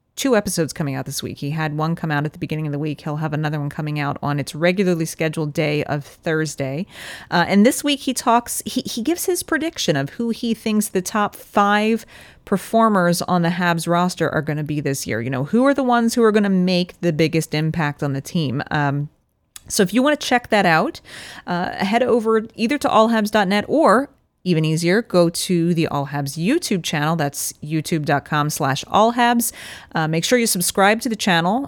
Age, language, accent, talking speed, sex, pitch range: 30-49, English, American, 215 wpm, female, 150-215 Hz